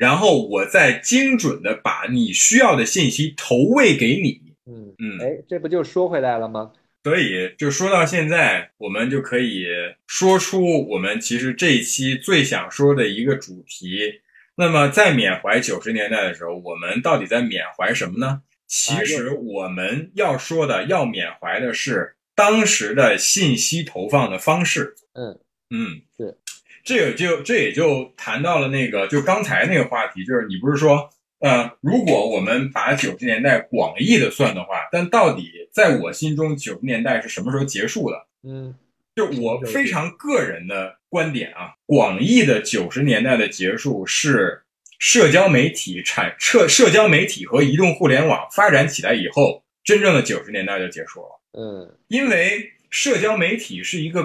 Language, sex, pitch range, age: Chinese, male, 130-205 Hz, 20-39